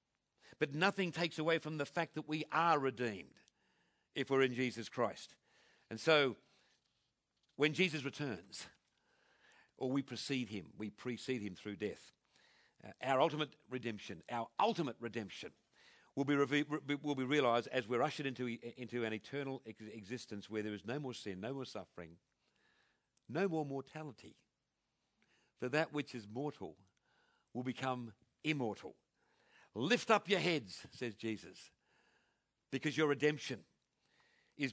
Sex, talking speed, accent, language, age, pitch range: male, 135 wpm, British, English, 50-69, 110-145 Hz